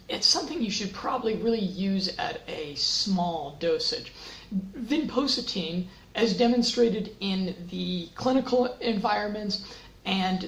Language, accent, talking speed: English, American, 110 wpm